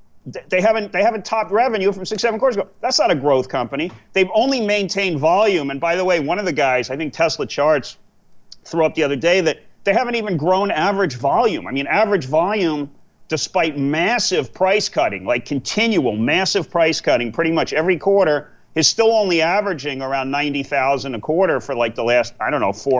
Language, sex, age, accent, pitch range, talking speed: English, male, 40-59, American, 145-205 Hz, 200 wpm